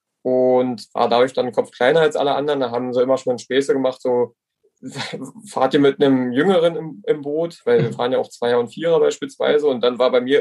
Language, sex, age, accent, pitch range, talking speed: German, male, 20-39, German, 130-195 Hz, 225 wpm